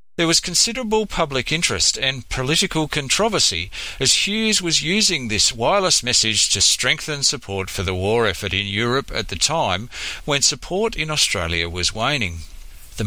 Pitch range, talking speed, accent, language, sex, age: 100-145 Hz, 155 wpm, Australian, English, male, 50-69